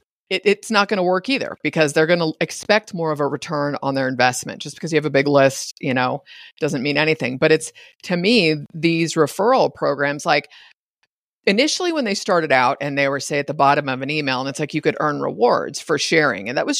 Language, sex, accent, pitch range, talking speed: English, female, American, 155-225 Hz, 230 wpm